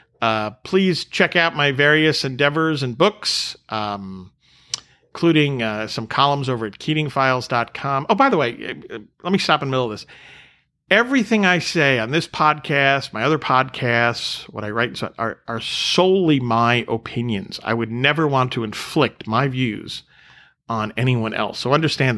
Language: English